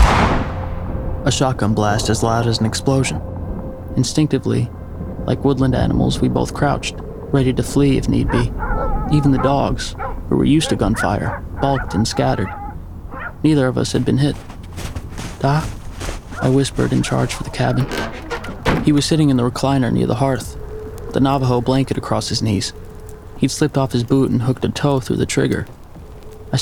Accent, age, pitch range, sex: American, 30-49, 105-135 Hz, male